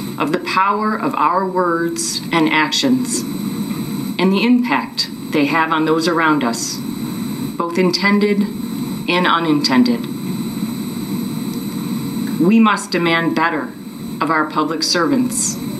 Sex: female